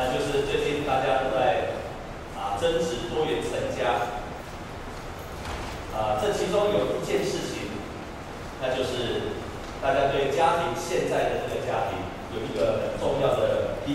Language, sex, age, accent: Chinese, male, 30-49, native